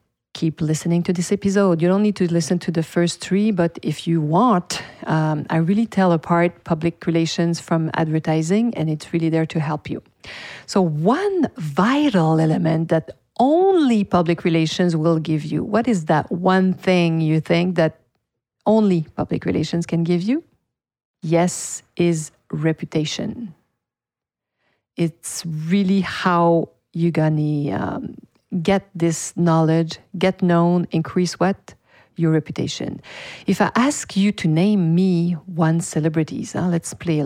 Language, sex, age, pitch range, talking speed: English, female, 40-59, 160-195 Hz, 145 wpm